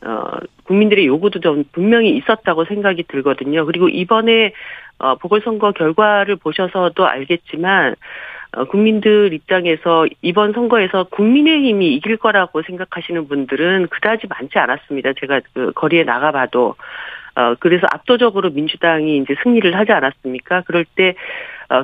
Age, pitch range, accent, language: 40-59, 165-220 Hz, native, Korean